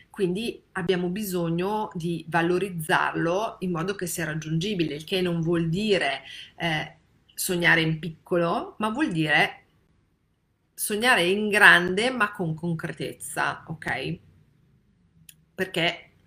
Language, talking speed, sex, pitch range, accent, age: Italian, 110 wpm, female, 165-195 Hz, native, 40-59